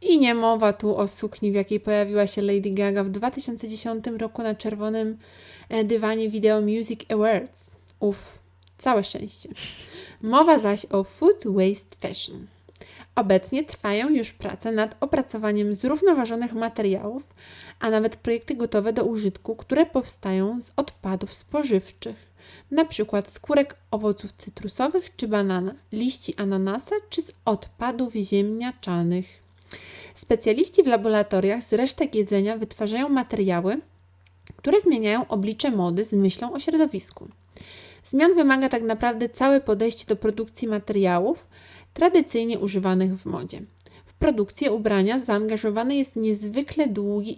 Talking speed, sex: 125 wpm, female